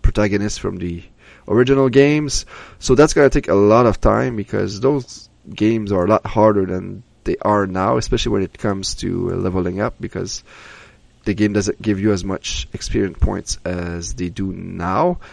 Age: 20-39